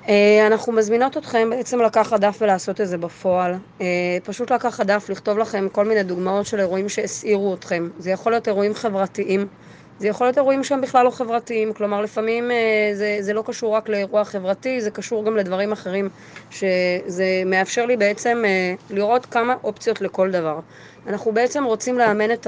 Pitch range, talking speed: 195-230 Hz, 180 wpm